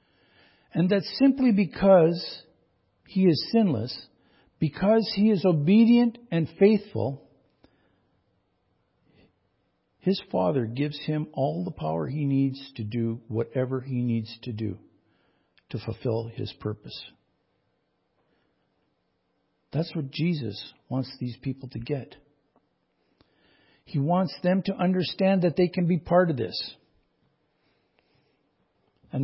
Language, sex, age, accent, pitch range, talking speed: English, male, 50-69, American, 130-175 Hz, 110 wpm